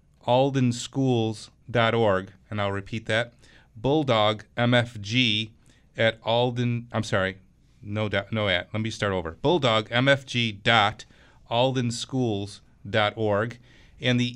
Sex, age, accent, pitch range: male, 40-59, American, 100-120 Hz